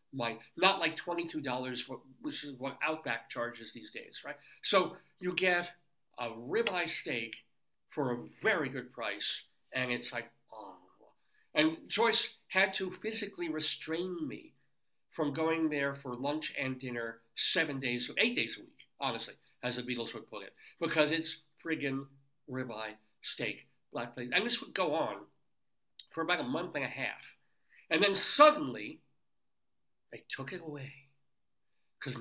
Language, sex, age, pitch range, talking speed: English, male, 60-79, 135-185 Hz, 150 wpm